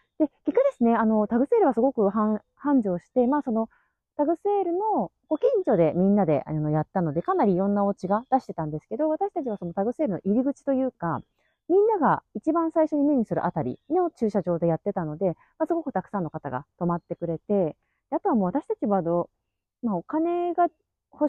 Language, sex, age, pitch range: Japanese, female, 30-49, 175-295 Hz